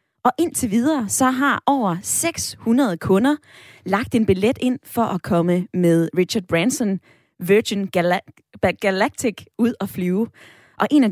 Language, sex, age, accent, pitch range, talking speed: Danish, female, 20-39, native, 185-245 Hz, 140 wpm